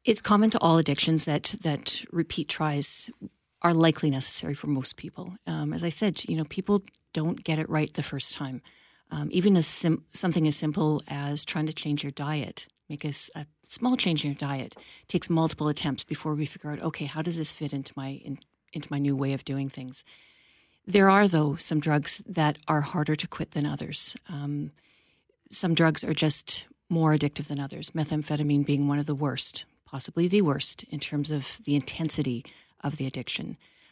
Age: 40-59